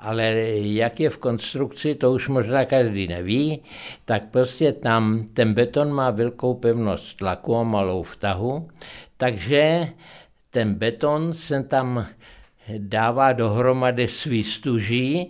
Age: 60-79